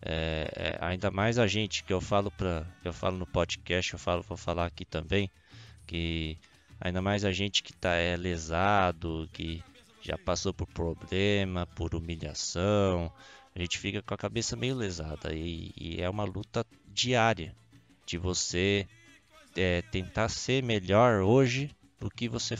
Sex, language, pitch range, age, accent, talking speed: male, Portuguese, 85-105 Hz, 20-39, Brazilian, 160 wpm